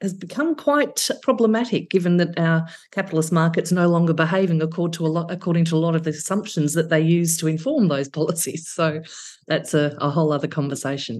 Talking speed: 200 wpm